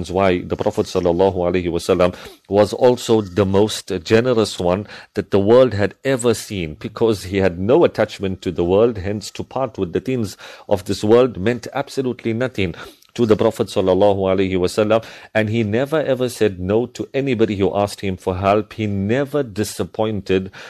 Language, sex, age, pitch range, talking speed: English, male, 50-69, 100-120 Hz, 160 wpm